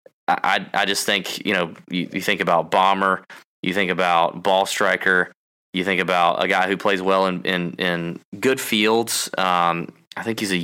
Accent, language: American, English